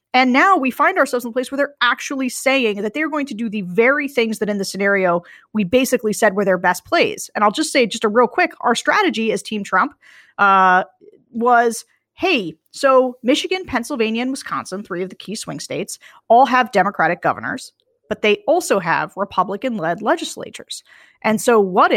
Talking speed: 195 wpm